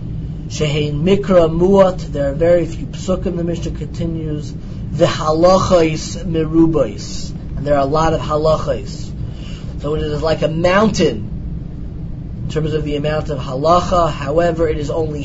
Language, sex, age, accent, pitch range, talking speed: English, male, 30-49, American, 145-175 Hz, 150 wpm